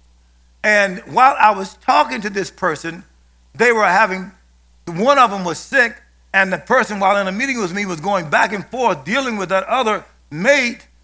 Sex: male